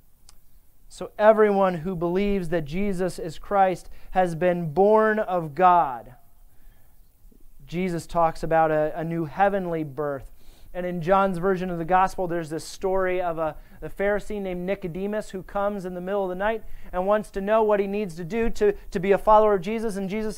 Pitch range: 170-210 Hz